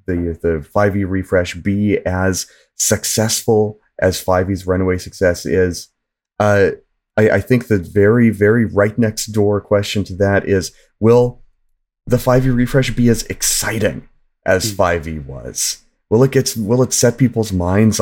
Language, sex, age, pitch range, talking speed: English, male, 30-49, 85-110 Hz, 145 wpm